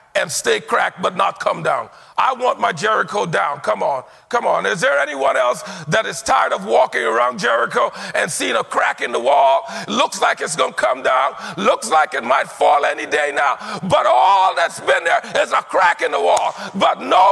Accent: American